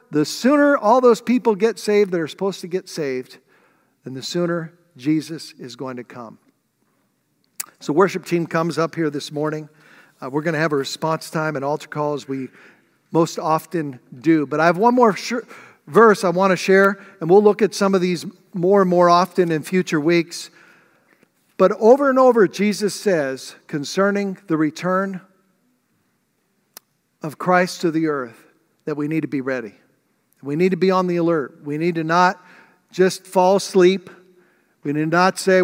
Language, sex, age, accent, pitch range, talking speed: English, male, 50-69, American, 155-195 Hz, 180 wpm